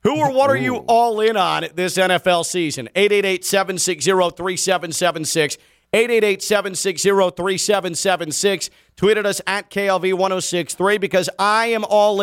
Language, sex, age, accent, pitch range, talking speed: English, male, 40-59, American, 160-190 Hz, 110 wpm